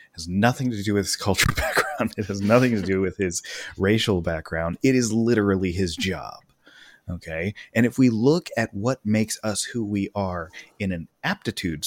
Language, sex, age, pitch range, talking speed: English, male, 30-49, 90-115 Hz, 185 wpm